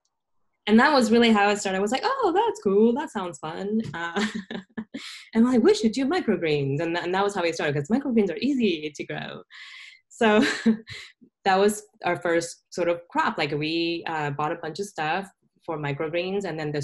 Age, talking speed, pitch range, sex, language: 10-29, 210 wpm, 160-220 Hz, female, English